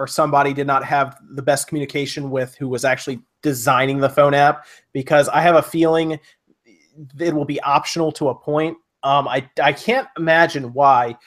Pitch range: 135-165 Hz